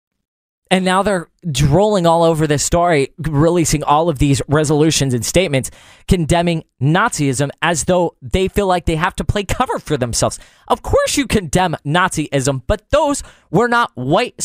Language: English